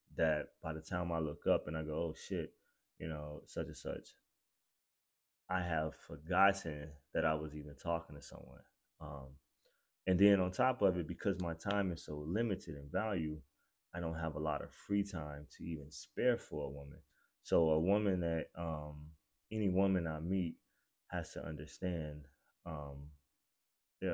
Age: 20-39